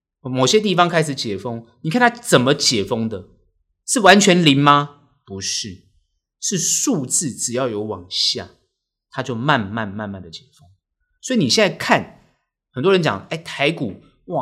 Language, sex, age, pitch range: Chinese, male, 30-49, 105-170 Hz